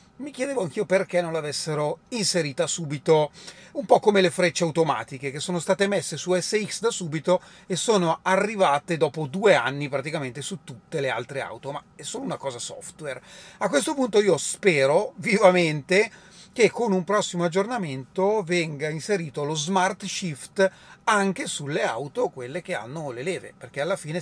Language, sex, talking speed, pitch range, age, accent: Italian, male, 165 wpm, 155-190 Hz, 30-49, native